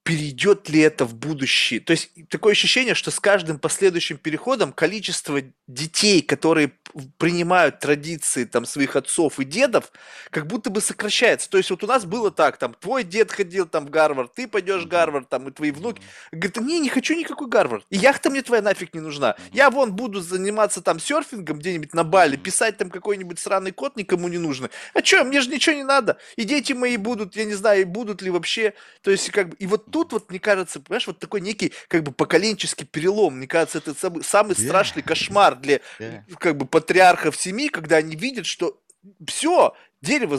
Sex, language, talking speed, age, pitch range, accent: male, Russian, 195 wpm, 20-39, 160-220 Hz, native